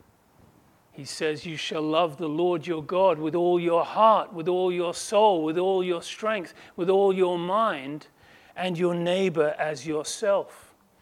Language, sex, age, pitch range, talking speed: English, male, 40-59, 155-190 Hz, 165 wpm